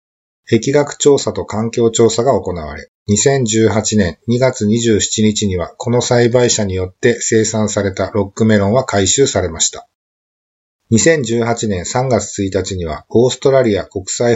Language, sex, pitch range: Japanese, male, 100-125 Hz